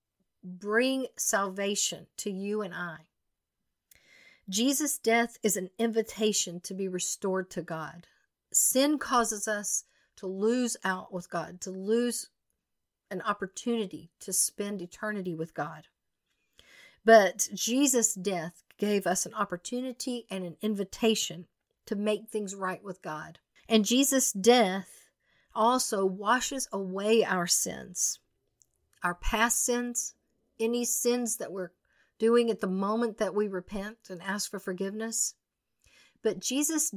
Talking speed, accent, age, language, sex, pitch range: 125 wpm, American, 50-69, English, female, 190-230 Hz